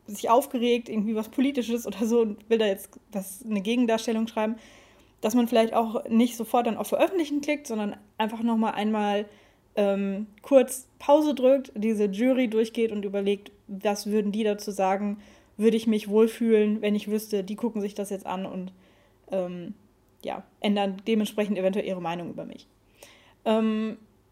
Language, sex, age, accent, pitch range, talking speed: German, female, 10-29, German, 210-250 Hz, 160 wpm